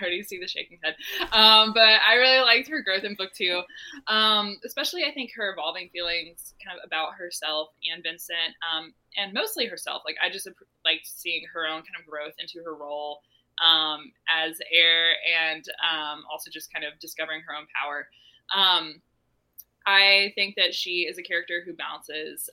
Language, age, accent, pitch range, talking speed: English, 20-39, American, 155-190 Hz, 185 wpm